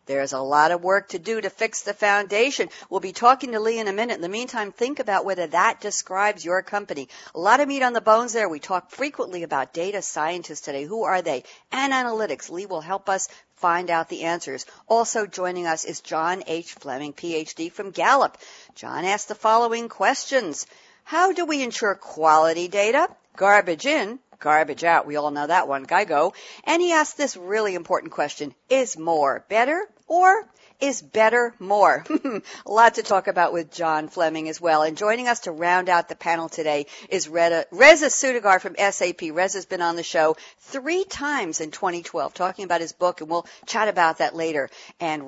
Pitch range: 165-225 Hz